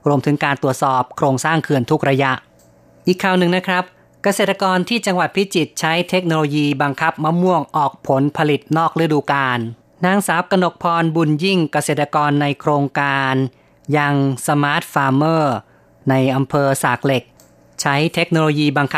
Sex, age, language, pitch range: female, 30-49, Thai, 135-155 Hz